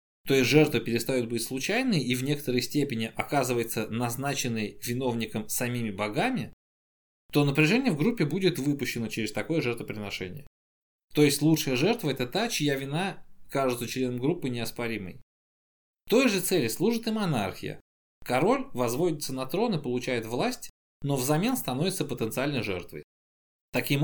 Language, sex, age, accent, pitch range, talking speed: Russian, male, 20-39, native, 115-155 Hz, 140 wpm